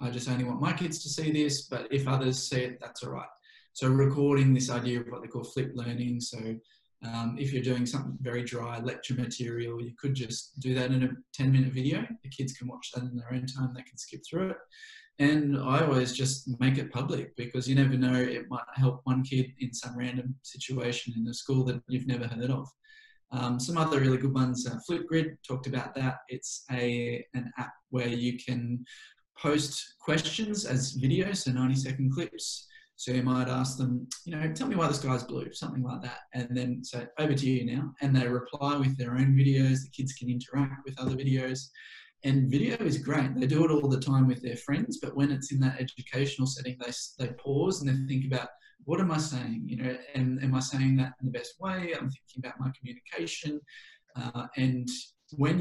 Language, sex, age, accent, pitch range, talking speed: English, male, 10-29, Australian, 125-140 Hz, 220 wpm